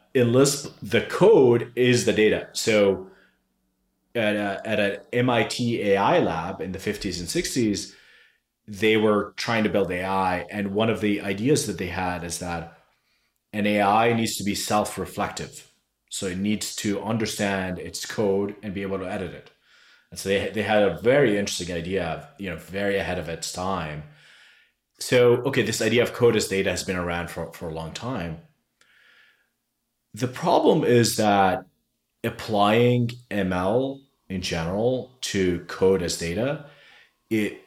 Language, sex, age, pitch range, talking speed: English, male, 30-49, 90-110 Hz, 160 wpm